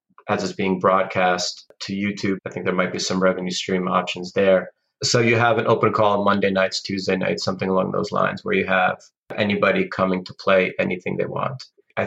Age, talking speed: 30-49, 210 wpm